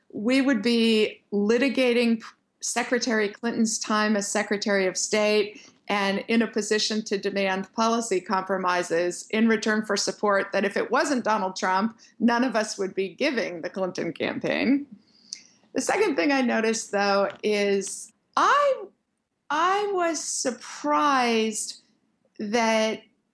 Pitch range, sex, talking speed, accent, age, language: 205-250 Hz, female, 130 wpm, American, 50-69, English